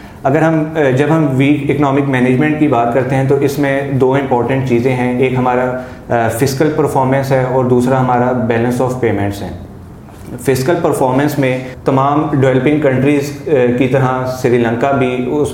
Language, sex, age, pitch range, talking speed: Urdu, male, 30-49, 125-140 Hz, 160 wpm